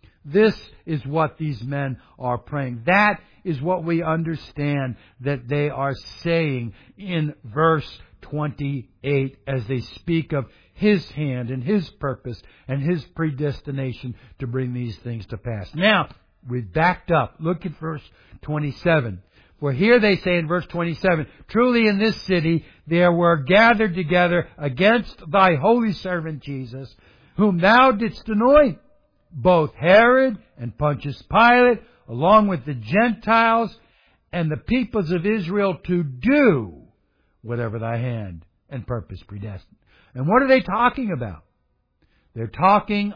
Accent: American